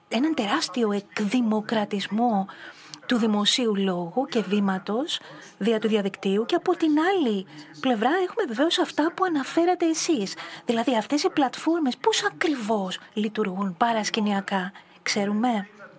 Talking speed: 115 wpm